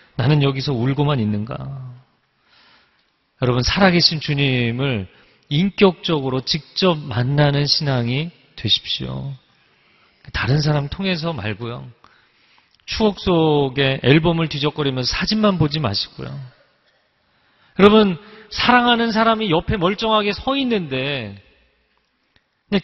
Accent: native